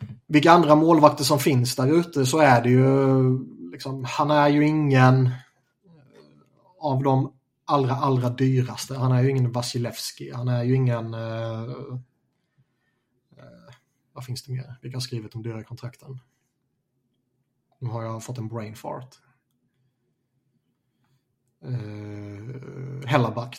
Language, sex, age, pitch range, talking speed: Swedish, male, 30-49, 120-135 Hz, 130 wpm